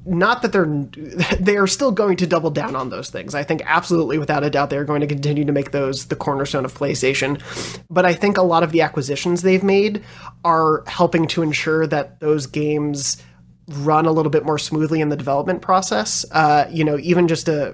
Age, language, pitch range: 30-49, English, 145-170 Hz